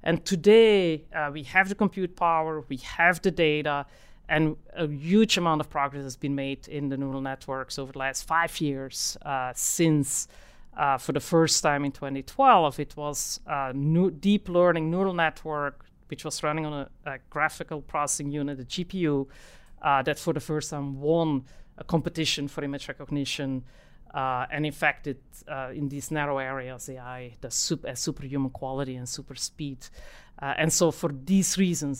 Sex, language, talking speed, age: female, English, 175 wpm, 40-59